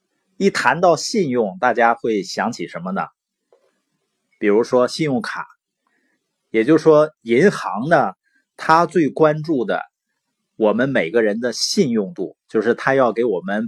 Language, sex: Chinese, male